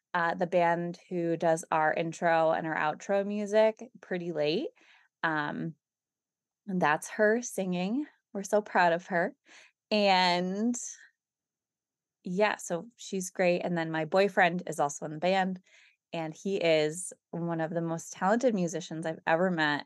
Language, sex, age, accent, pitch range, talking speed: English, female, 20-39, American, 160-200 Hz, 145 wpm